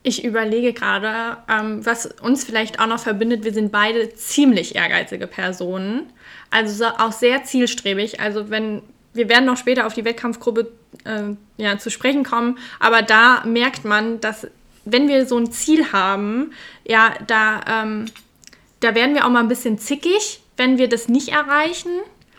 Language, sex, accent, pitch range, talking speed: German, female, German, 215-245 Hz, 165 wpm